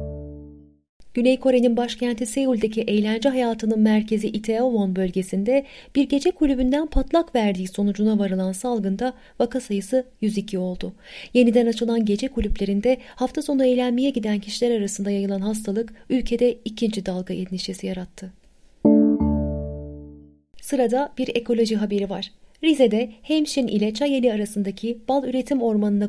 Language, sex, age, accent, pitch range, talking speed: Turkish, female, 30-49, native, 195-255 Hz, 115 wpm